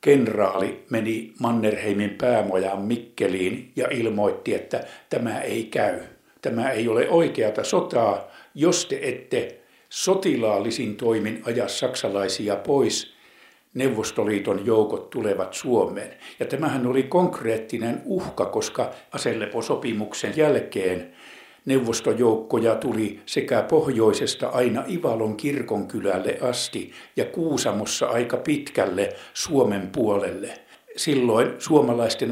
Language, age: Finnish, 60-79